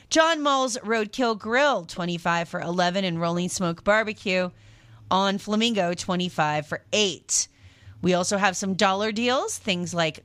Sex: female